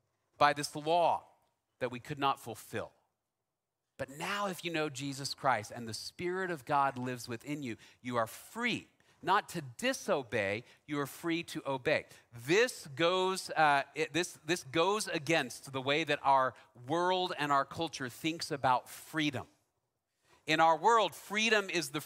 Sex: male